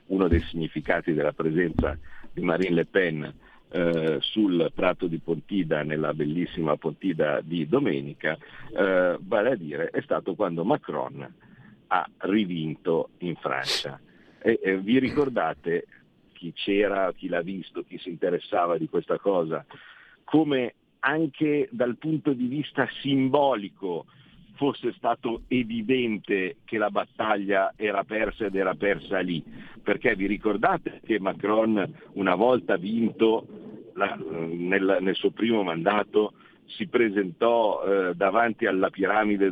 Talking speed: 130 wpm